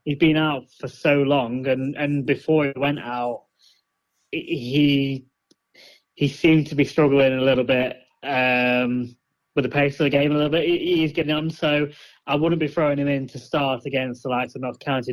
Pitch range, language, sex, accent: 125-145 Hz, English, male, British